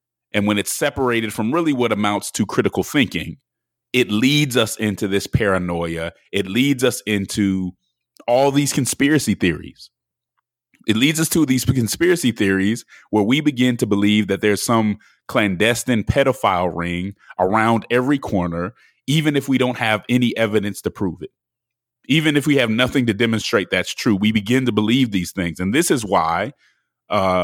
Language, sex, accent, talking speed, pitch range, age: English, male, American, 165 wpm, 95-125 Hz, 30-49